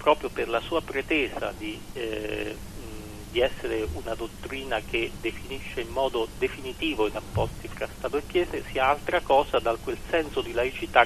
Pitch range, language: 110-135 Hz, Italian